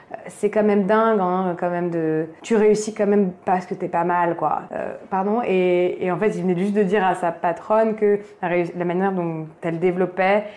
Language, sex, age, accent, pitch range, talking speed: French, female, 20-39, French, 185-215 Hz, 220 wpm